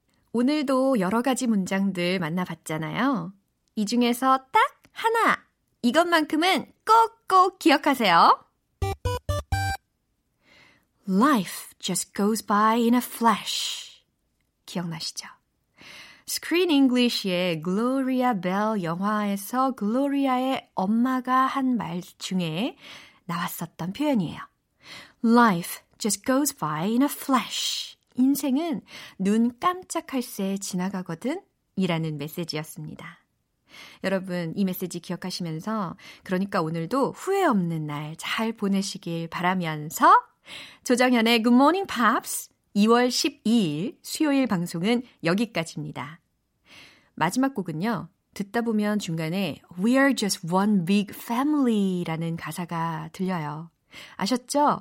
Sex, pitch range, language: female, 175-260 Hz, Korean